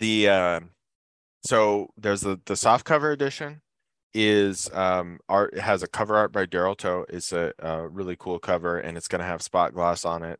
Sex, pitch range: male, 85-100 Hz